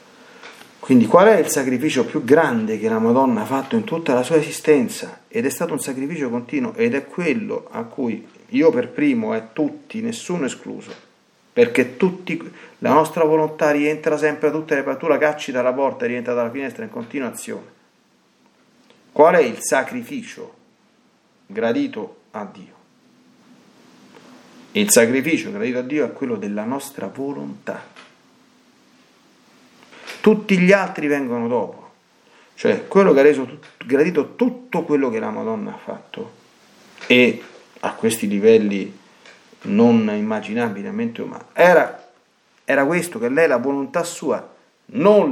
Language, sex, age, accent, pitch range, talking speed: Italian, male, 40-59, native, 150-230 Hz, 145 wpm